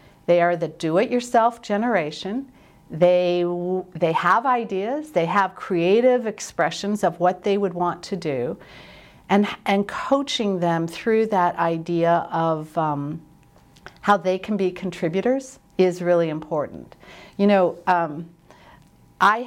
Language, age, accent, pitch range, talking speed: English, 50-69, American, 175-215 Hz, 125 wpm